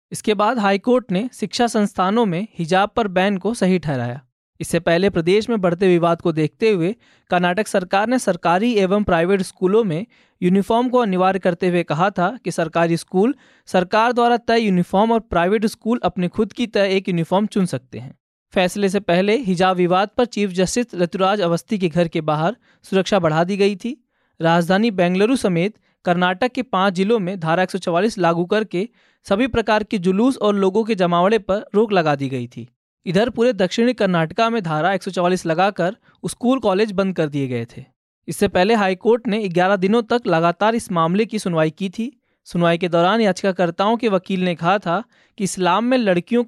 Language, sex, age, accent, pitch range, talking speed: Hindi, male, 20-39, native, 175-220 Hz, 185 wpm